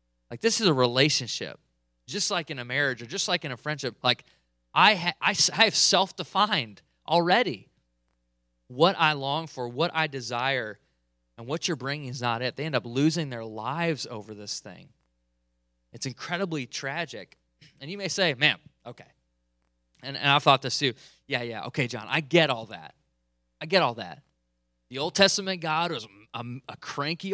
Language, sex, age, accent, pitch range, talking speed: English, male, 20-39, American, 110-165 Hz, 175 wpm